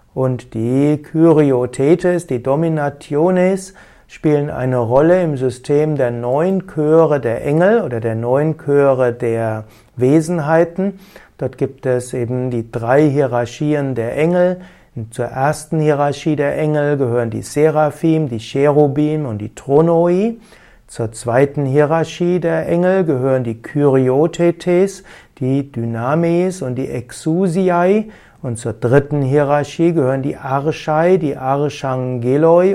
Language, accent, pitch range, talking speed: German, German, 130-170 Hz, 120 wpm